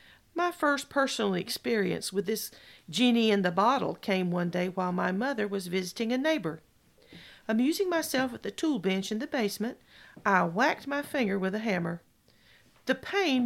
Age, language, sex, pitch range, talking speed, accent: 40-59, English, female, 200-280 Hz, 155 wpm, American